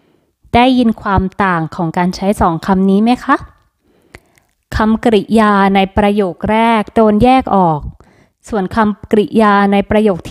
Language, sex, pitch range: Thai, female, 195-240 Hz